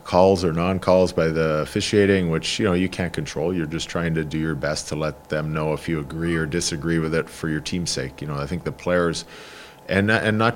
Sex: male